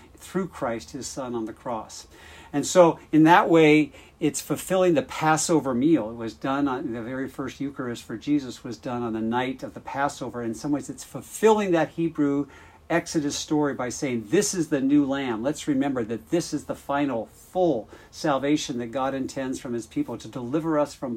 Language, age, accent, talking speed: English, 50-69, American, 200 wpm